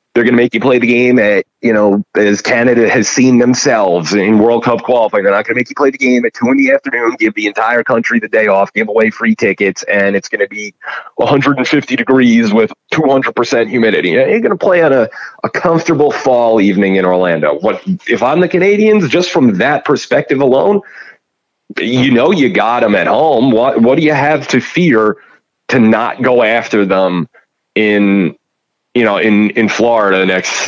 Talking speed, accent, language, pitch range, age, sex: 205 wpm, American, English, 110-155 Hz, 30-49, male